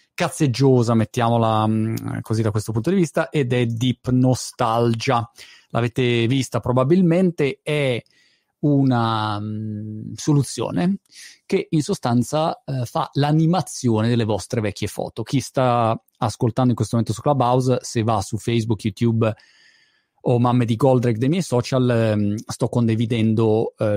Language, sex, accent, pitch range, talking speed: Italian, male, native, 115-145 Hz, 135 wpm